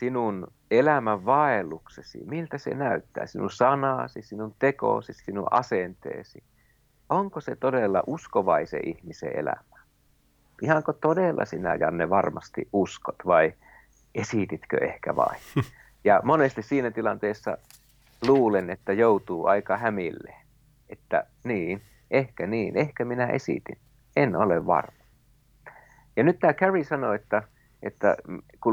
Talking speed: 115 wpm